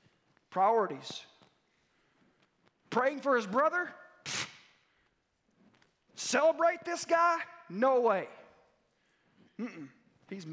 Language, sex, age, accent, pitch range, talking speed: English, male, 40-59, American, 175-270 Hz, 75 wpm